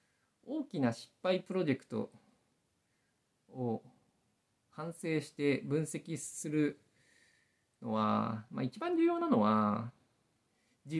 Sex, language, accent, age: male, Japanese, native, 50-69